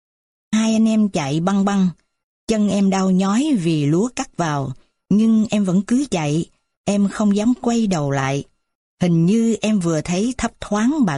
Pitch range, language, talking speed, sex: 155-210 Hz, Vietnamese, 175 wpm, female